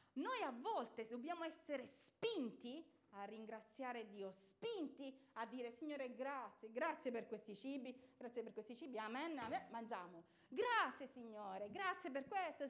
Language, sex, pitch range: Italian, female, 200-285 Hz